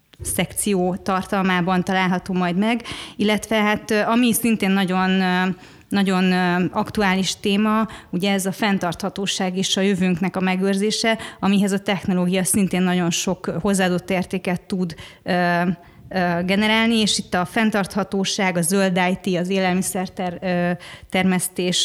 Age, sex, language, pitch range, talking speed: 30-49, female, Hungarian, 185-205 Hz, 115 wpm